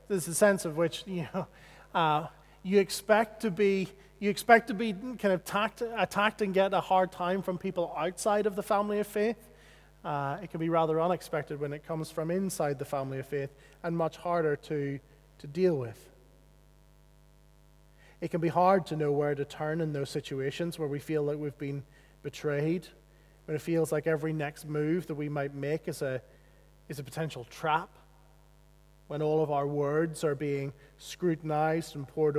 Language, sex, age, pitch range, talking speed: English, male, 30-49, 150-175 Hz, 185 wpm